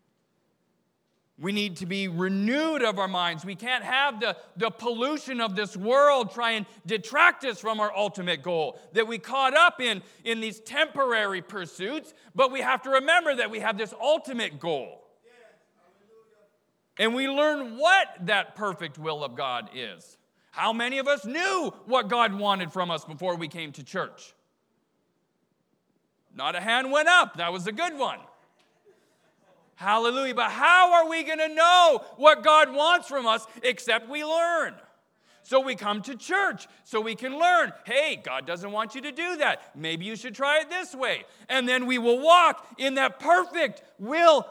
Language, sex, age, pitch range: English, male, 40-59, 200-285 Hz